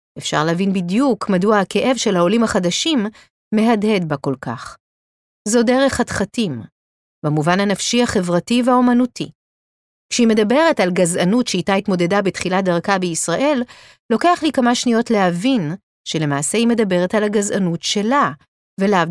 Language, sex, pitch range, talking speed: Hebrew, female, 180-250 Hz, 125 wpm